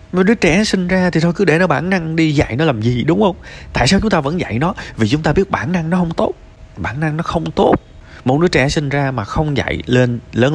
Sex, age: male, 20-39